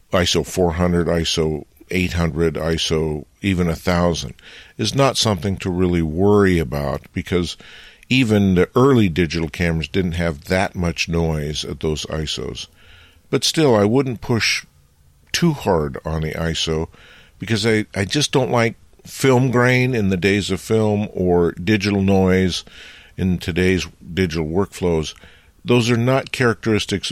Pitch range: 85-105 Hz